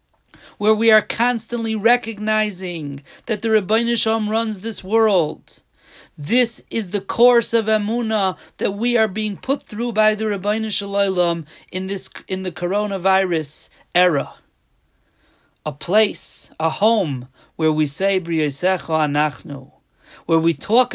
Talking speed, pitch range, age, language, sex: 125 wpm, 160-220 Hz, 40-59, English, male